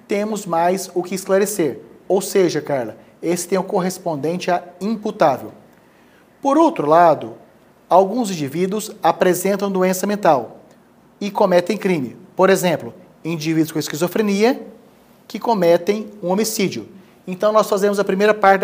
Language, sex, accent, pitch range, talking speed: Portuguese, male, Brazilian, 175-215 Hz, 130 wpm